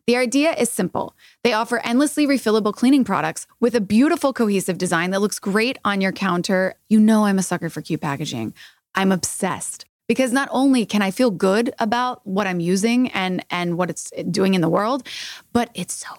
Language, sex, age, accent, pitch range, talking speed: English, female, 20-39, American, 185-240 Hz, 195 wpm